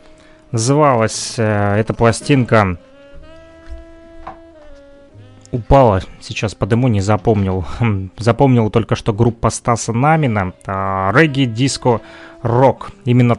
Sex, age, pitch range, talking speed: male, 20-39, 100-125 Hz, 85 wpm